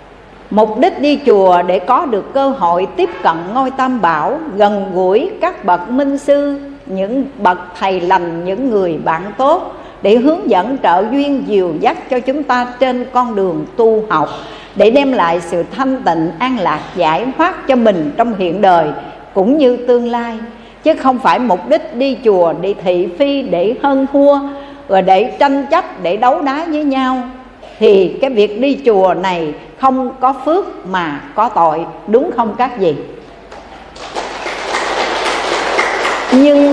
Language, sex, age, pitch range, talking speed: Vietnamese, female, 60-79, 190-280 Hz, 165 wpm